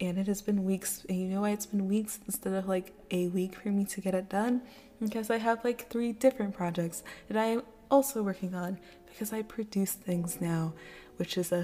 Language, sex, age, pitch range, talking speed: English, female, 20-39, 185-225 Hz, 225 wpm